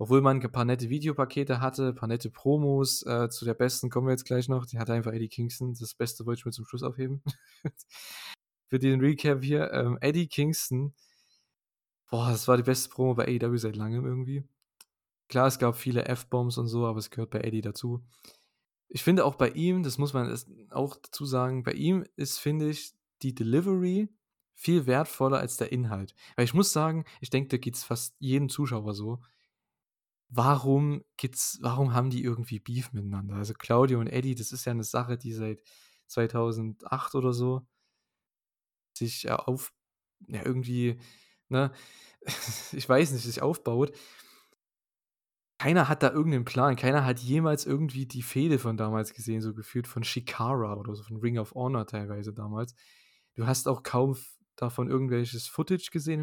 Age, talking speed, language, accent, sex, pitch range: 20-39, 180 wpm, German, German, male, 120-140 Hz